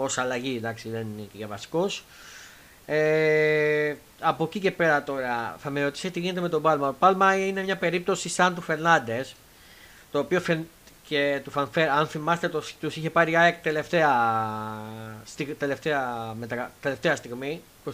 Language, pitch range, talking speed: Greek, 125-155 Hz, 155 wpm